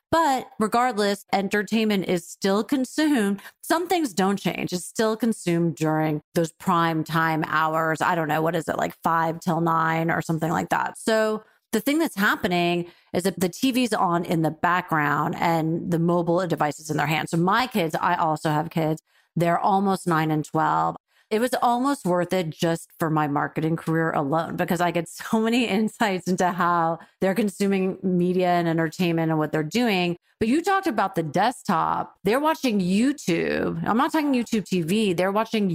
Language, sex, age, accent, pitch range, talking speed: English, female, 30-49, American, 165-205 Hz, 185 wpm